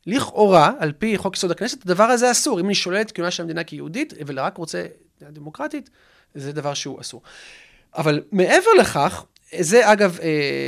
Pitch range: 155-225 Hz